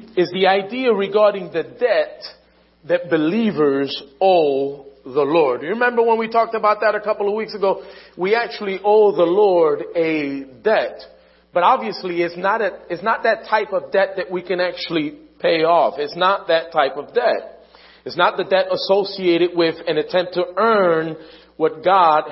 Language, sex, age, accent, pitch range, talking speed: English, male, 40-59, American, 165-225 Hz, 175 wpm